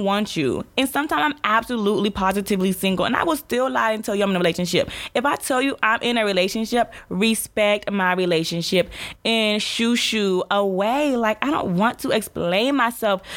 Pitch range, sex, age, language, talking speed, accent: 170-225 Hz, female, 20-39, English, 190 wpm, American